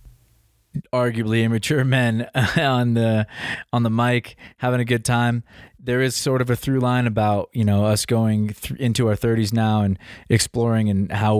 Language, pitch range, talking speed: English, 105-120 Hz, 175 wpm